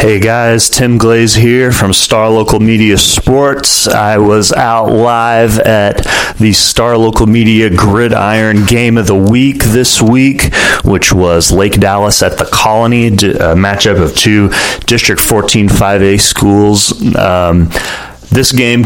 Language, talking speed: English, 145 wpm